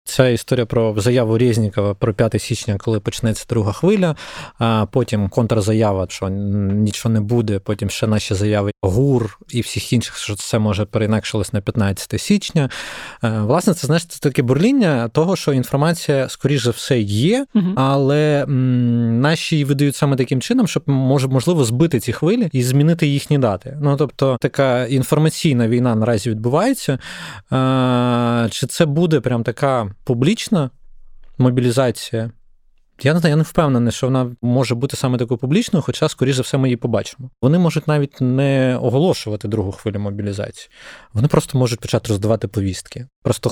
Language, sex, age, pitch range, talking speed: Ukrainian, male, 20-39, 110-145 Hz, 150 wpm